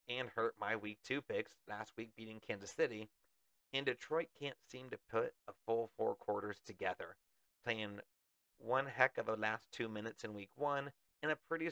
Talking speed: 180 wpm